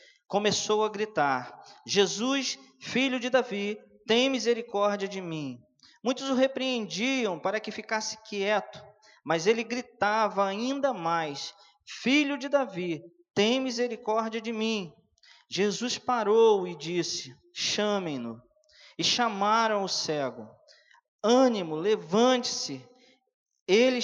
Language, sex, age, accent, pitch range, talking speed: Portuguese, male, 20-39, Brazilian, 165-230 Hz, 105 wpm